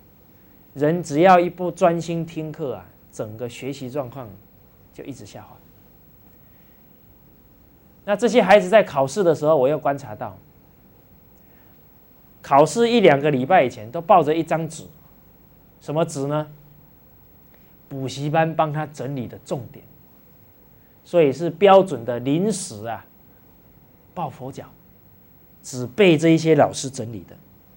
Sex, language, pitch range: male, English, 125-170 Hz